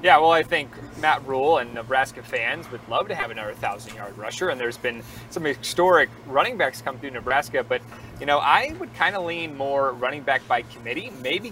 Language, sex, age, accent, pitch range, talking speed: English, male, 30-49, American, 120-160 Hz, 210 wpm